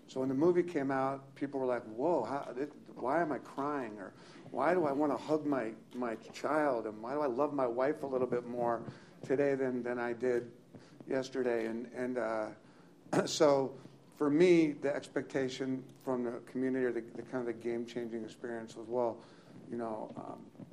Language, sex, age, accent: English, male, 50-69, American